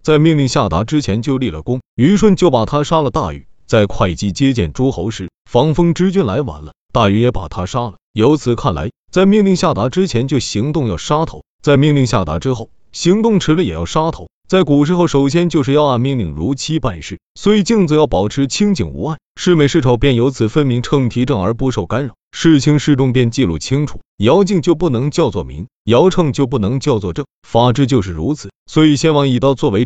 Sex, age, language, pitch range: male, 30-49, Chinese, 115-155 Hz